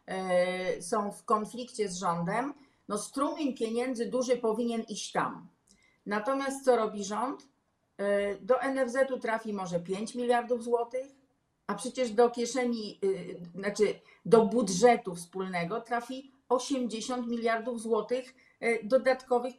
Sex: female